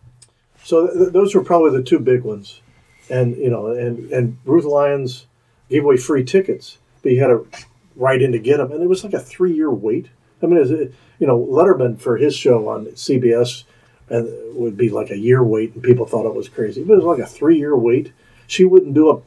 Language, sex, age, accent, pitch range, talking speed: English, male, 50-69, American, 120-145 Hz, 225 wpm